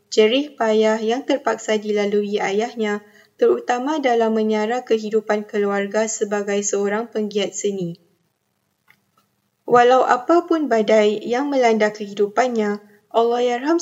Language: Malay